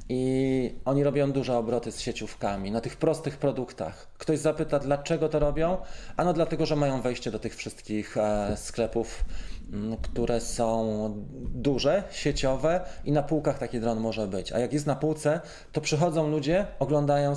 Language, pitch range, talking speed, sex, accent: Polish, 110-145 Hz, 165 wpm, male, native